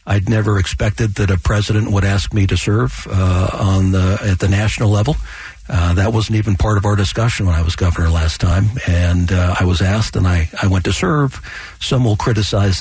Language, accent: English, American